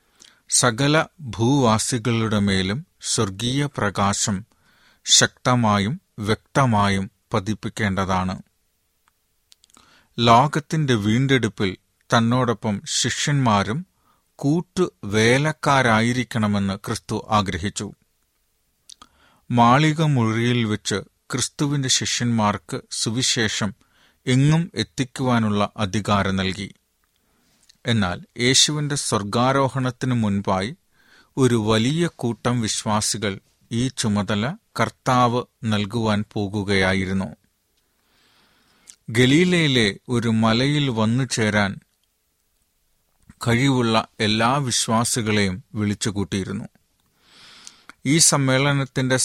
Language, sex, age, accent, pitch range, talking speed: Malayalam, male, 40-59, native, 105-130 Hz, 60 wpm